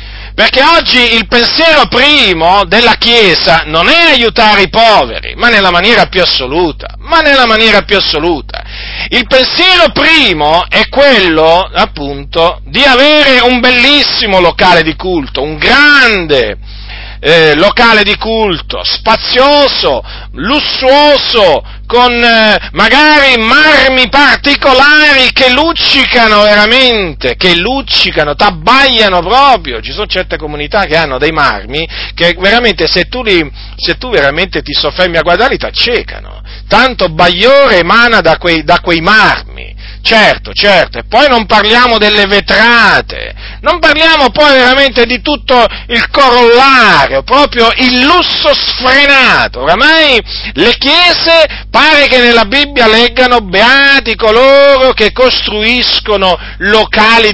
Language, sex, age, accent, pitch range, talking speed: Italian, male, 40-59, native, 185-270 Hz, 125 wpm